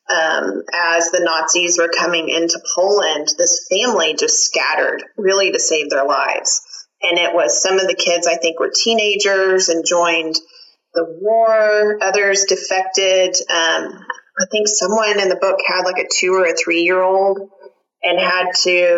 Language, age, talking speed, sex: English, 30-49, 165 wpm, female